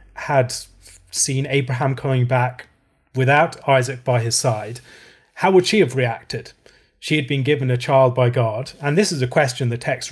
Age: 30-49